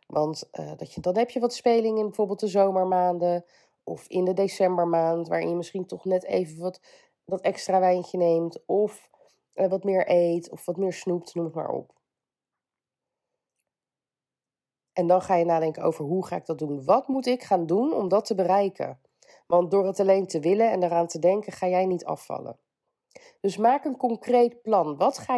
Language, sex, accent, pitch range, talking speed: Dutch, female, Dutch, 175-230 Hz, 195 wpm